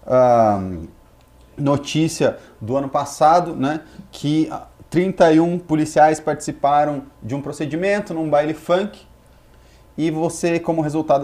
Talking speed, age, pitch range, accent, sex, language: 105 wpm, 30-49, 130-165 Hz, Brazilian, male, Portuguese